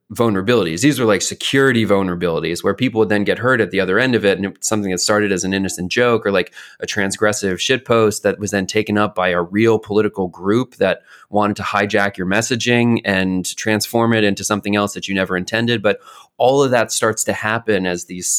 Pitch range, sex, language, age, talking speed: 95-115 Hz, male, English, 30-49, 215 wpm